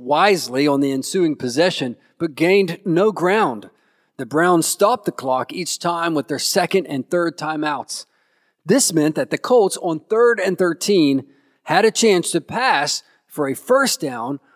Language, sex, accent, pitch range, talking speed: English, male, American, 155-205 Hz, 165 wpm